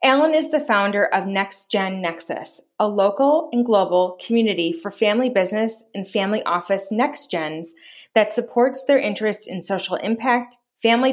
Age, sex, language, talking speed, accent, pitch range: 30-49, female, English, 150 wpm, American, 195-235 Hz